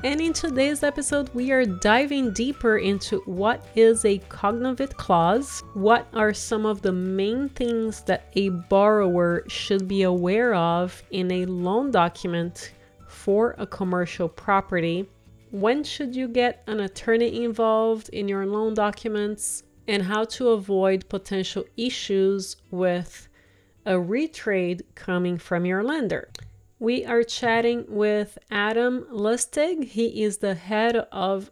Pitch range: 190-235 Hz